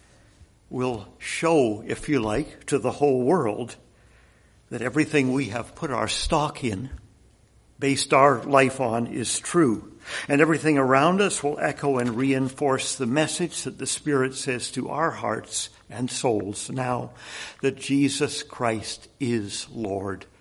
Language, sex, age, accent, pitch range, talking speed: English, male, 60-79, American, 115-150 Hz, 140 wpm